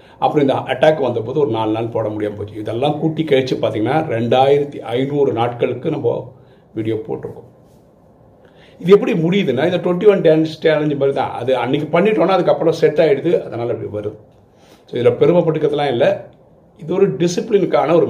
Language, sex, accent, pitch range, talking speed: Tamil, male, native, 105-160 Hz, 155 wpm